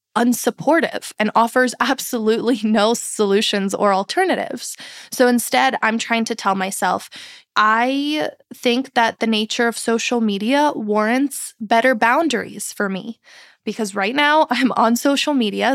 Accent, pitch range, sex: American, 205-255 Hz, female